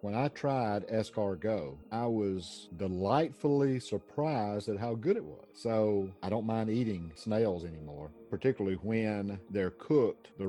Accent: American